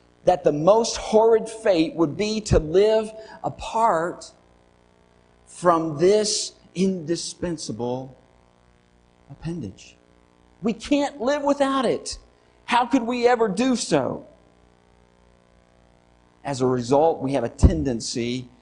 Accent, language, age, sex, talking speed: American, English, 50-69, male, 105 wpm